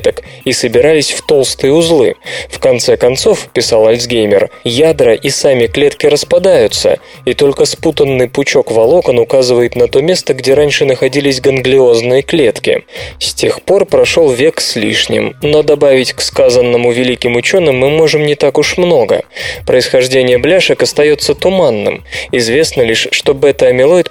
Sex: male